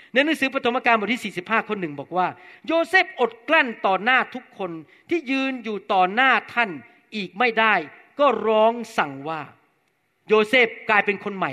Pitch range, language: 195-245 Hz, Thai